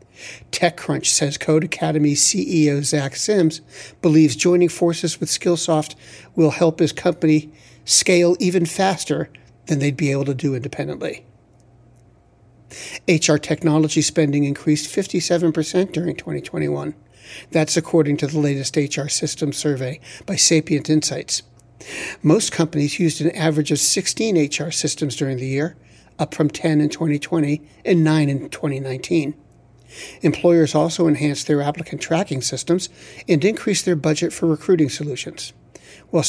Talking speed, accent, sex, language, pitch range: 130 wpm, American, male, English, 145-170 Hz